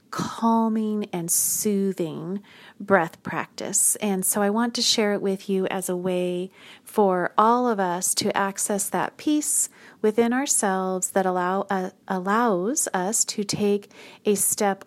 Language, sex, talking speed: English, female, 140 wpm